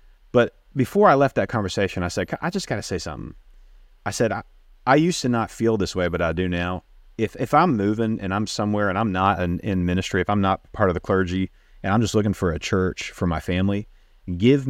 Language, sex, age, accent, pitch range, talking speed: English, male, 30-49, American, 90-115 Hz, 240 wpm